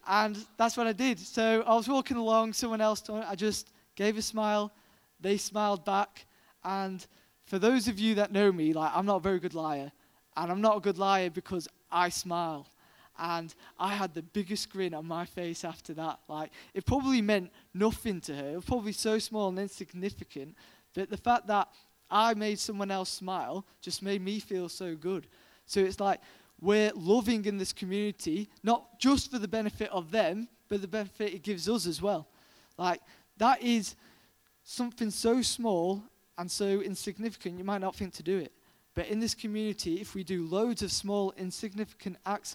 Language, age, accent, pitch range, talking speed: English, 20-39, British, 180-215 Hz, 190 wpm